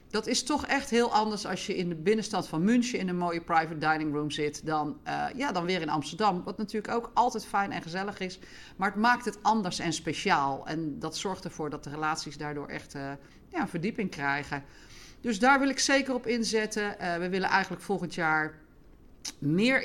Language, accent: Dutch, Dutch